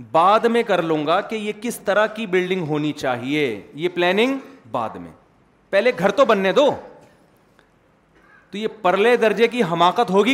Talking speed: 170 wpm